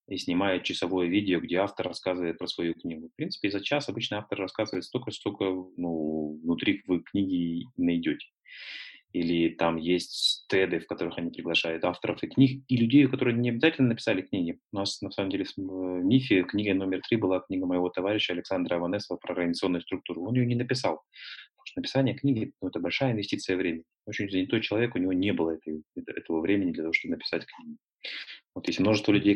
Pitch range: 90-120 Hz